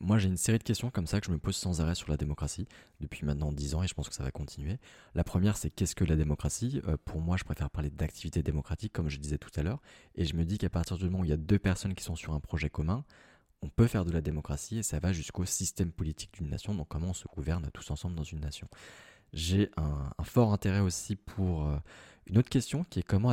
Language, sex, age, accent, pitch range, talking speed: French, male, 20-39, French, 75-95 Hz, 275 wpm